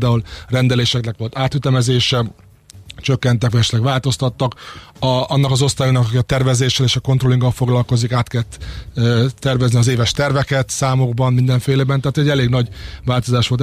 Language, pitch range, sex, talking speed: Hungarian, 125-140 Hz, male, 140 wpm